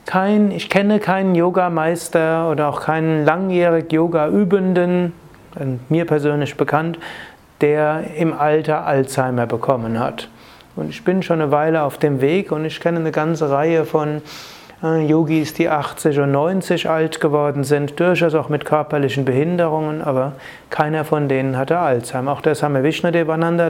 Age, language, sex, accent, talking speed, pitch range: 30-49, German, male, German, 150 wpm, 135-165 Hz